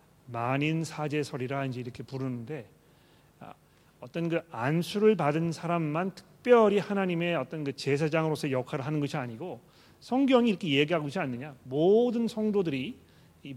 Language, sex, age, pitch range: Korean, male, 40-59, 135-170 Hz